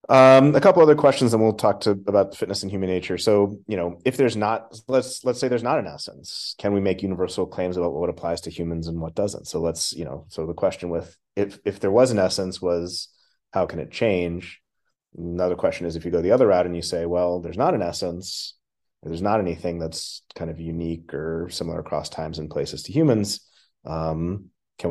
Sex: male